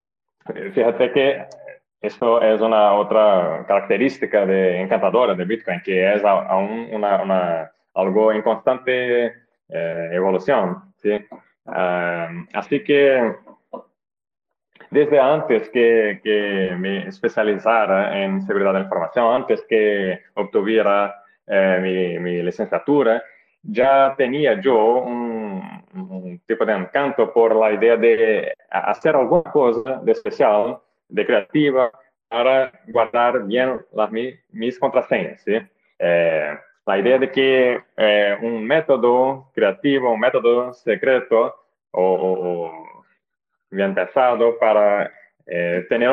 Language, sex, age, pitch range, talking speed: Spanish, male, 20-39, 100-135 Hz, 115 wpm